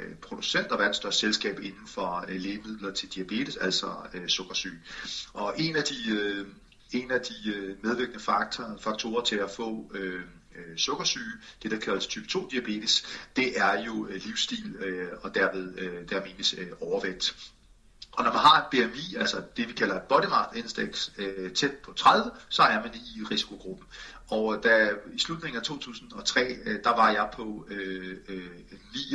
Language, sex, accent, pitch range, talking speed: Danish, male, native, 95-115 Hz, 160 wpm